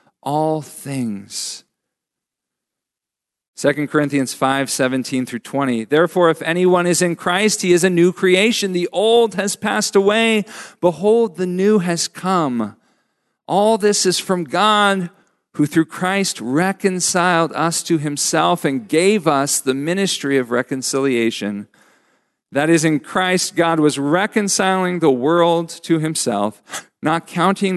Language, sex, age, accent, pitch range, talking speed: English, male, 50-69, American, 135-185 Hz, 125 wpm